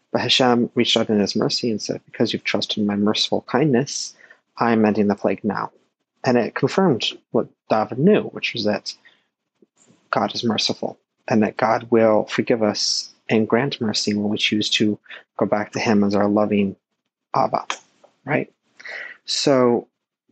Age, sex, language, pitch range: 30-49, male, English, 105-120 Hz